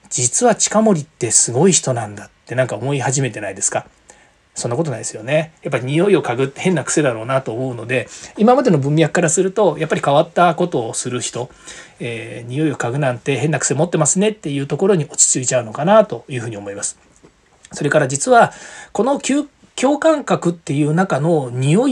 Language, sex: Japanese, male